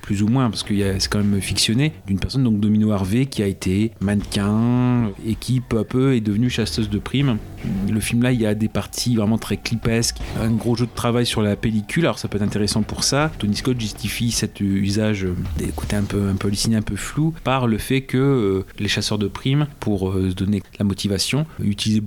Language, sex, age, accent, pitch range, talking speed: French, male, 30-49, French, 100-120 Hz, 240 wpm